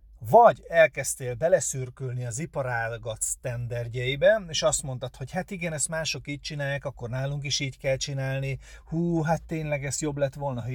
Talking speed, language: 165 wpm, Hungarian